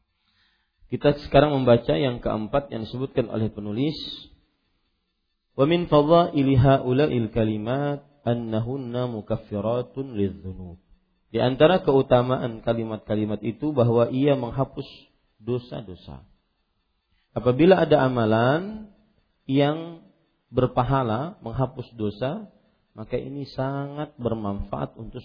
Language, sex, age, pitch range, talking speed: Malay, male, 40-59, 110-140 Hz, 95 wpm